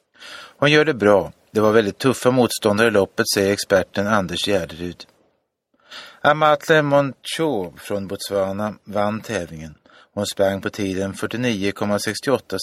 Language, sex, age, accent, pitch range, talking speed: Swedish, male, 30-49, native, 95-120 Hz, 125 wpm